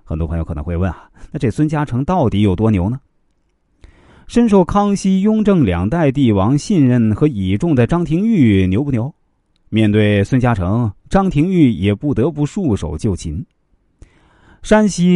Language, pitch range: Chinese, 95-145 Hz